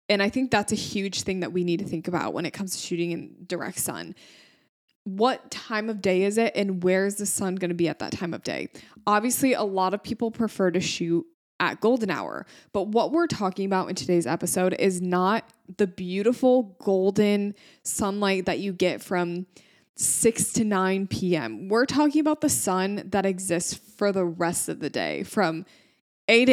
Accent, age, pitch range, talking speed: American, 20-39, 180-220 Hz, 200 wpm